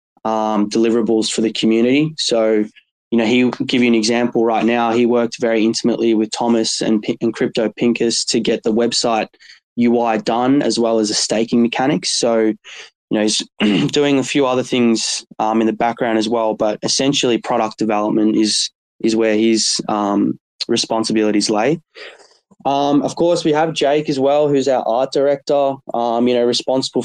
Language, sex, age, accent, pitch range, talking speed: English, male, 10-29, Australian, 110-125 Hz, 175 wpm